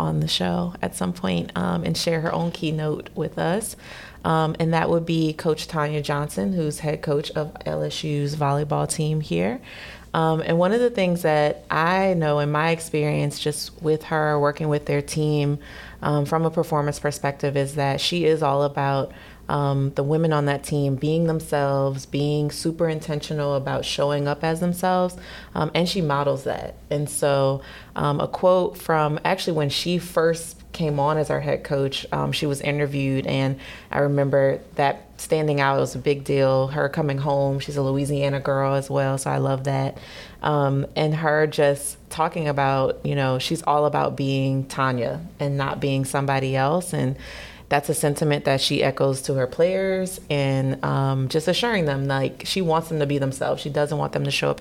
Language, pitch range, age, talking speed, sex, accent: English, 140-160 Hz, 30-49, 190 wpm, female, American